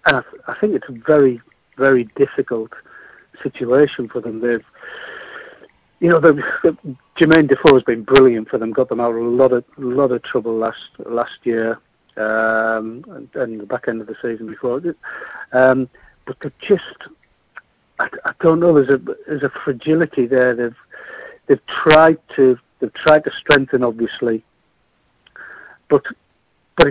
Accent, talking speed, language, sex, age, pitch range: British, 160 wpm, English, male, 60-79, 120-145 Hz